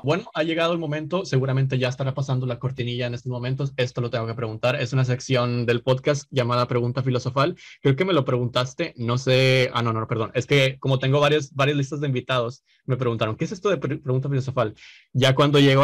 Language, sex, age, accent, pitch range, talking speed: Spanish, male, 20-39, Mexican, 120-140 Hz, 220 wpm